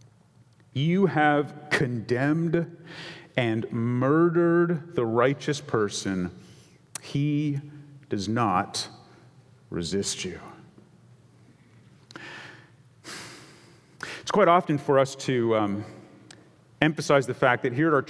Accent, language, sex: American, English, male